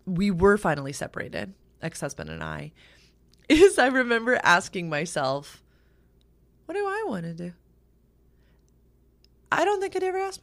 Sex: female